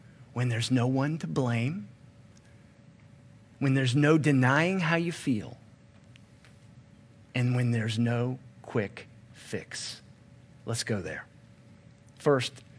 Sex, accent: male, American